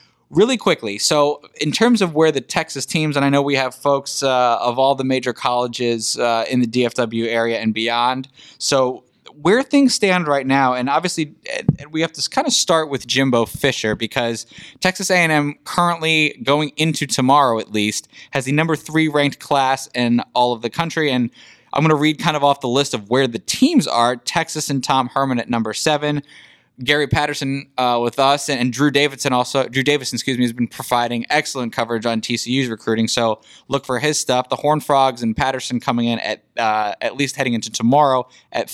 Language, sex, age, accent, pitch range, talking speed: English, male, 20-39, American, 120-150 Hz, 200 wpm